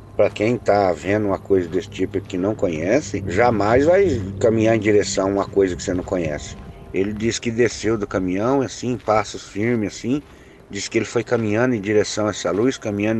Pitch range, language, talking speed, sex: 100-125 Hz, Portuguese, 200 wpm, male